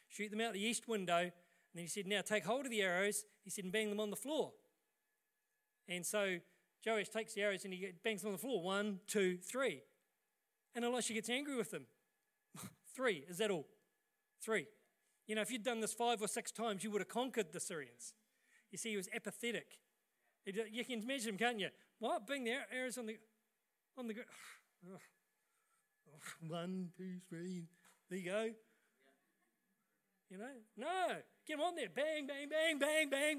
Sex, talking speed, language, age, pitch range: male, 185 wpm, English, 40-59, 195-255 Hz